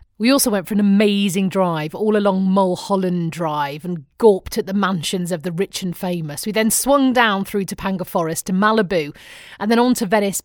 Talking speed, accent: 200 wpm, British